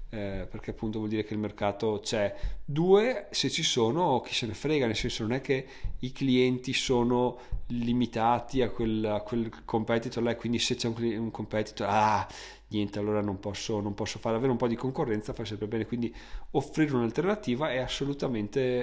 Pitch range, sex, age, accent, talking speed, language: 110-130 Hz, male, 30-49, native, 185 wpm, Italian